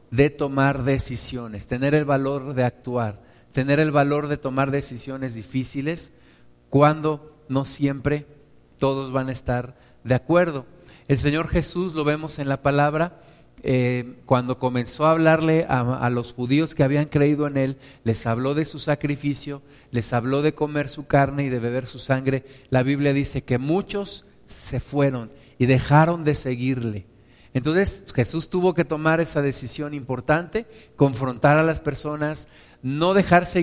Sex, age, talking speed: male, 50-69, 155 wpm